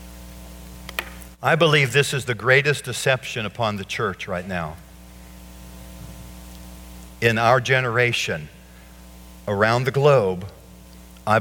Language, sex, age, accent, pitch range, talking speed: English, male, 60-79, American, 95-135 Hz, 100 wpm